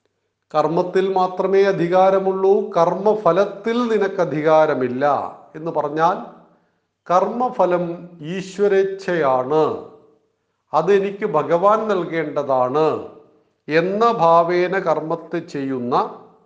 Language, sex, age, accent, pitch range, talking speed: Malayalam, male, 50-69, native, 155-200 Hz, 60 wpm